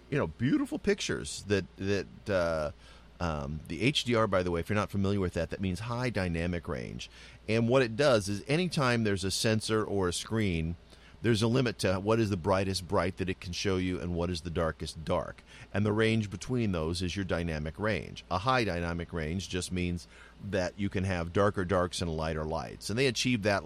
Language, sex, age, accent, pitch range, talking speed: English, male, 40-59, American, 80-95 Hz, 215 wpm